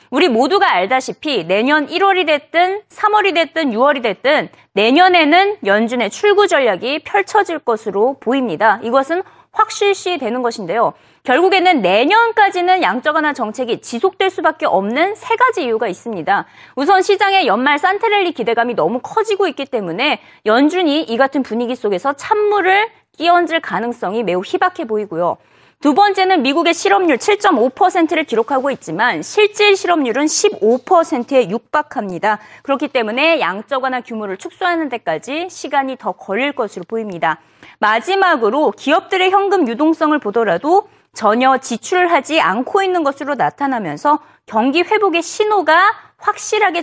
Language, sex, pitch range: Korean, female, 235-380 Hz